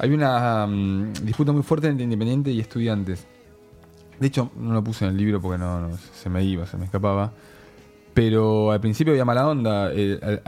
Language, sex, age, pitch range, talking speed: Spanish, male, 20-39, 100-130 Hz, 195 wpm